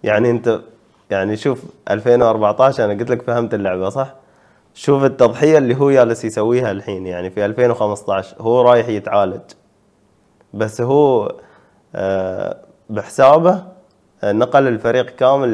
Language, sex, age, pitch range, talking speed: Arabic, male, 20-39, 100-125 Hz, 120 wpm